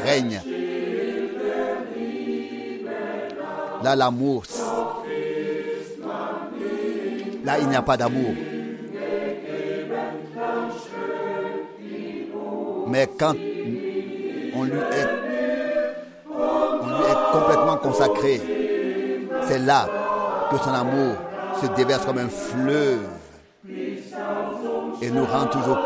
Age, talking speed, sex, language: 50-69, 70 wpm, male, French